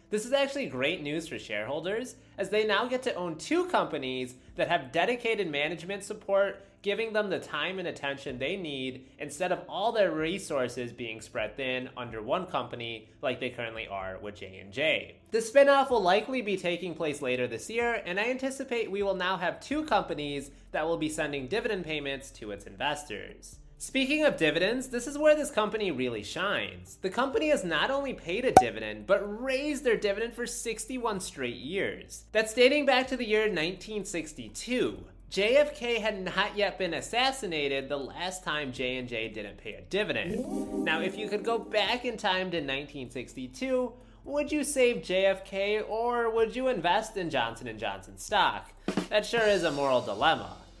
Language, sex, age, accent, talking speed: English, male, 20-39, American, 175 wpm